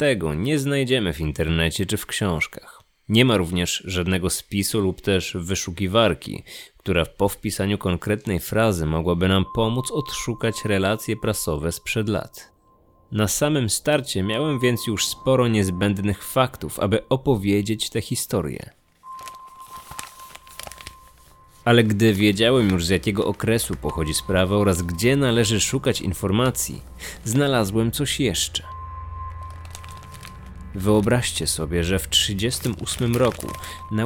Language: Polish